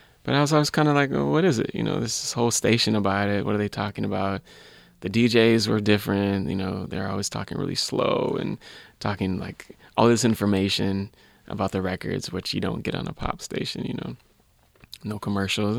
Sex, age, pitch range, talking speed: male, 20-39, 95-110 Hz, 210 wpm